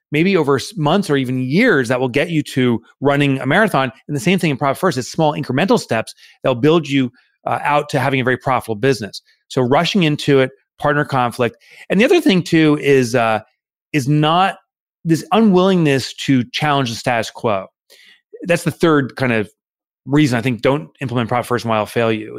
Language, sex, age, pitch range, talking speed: English, male, 30-49, 120-155 Hz, 200 wpm